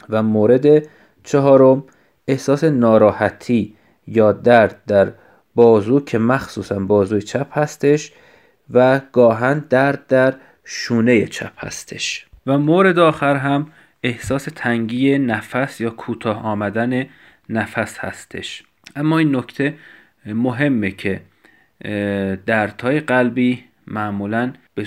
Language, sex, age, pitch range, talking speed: Persian, male, 30-49, 110-130 Hz, 100 wpm